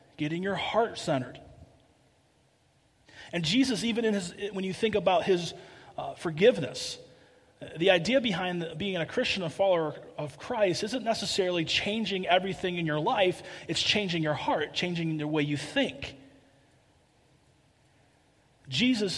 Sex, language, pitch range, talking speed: male, English, 145-190 Hz, 135 wpm